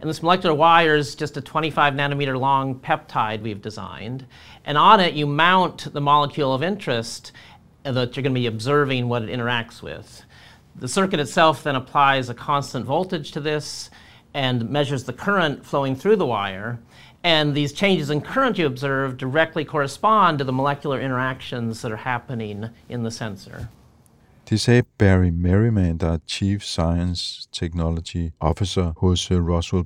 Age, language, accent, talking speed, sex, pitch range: 50-69, Danish, American, 165 wpm, male, 95-135 Hz